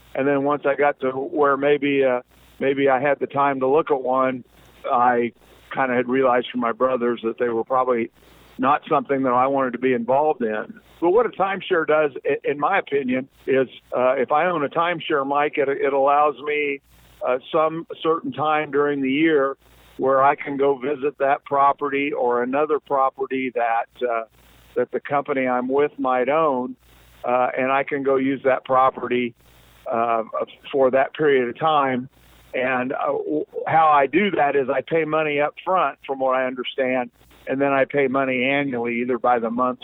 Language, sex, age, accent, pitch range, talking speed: English, male, 50-69, American, 125-145 Hz, 190 wpm